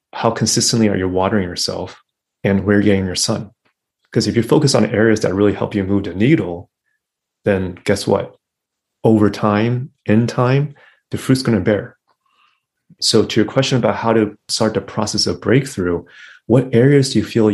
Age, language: 30-49, English